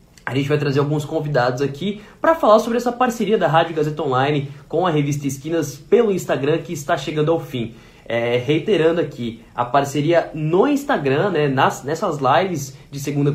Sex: male